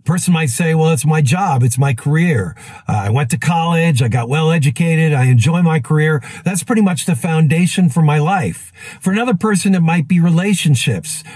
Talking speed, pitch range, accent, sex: 195 wpm, 145-185 Hz, American, male